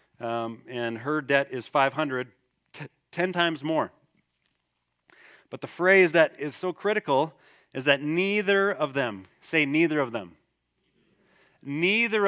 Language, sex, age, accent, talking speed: English, male, 30-49, American, 125 wpm